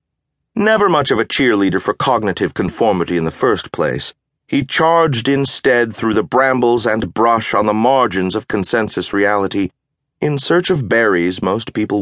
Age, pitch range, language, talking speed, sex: 30-49, 95-140 Hz, English, 160 wpm, male